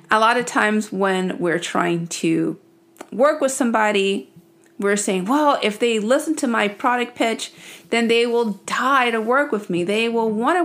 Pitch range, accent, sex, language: 205-280 Hz, American, female, English